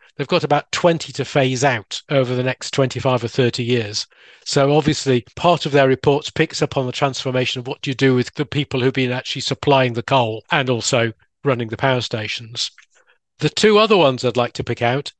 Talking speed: 210 wpm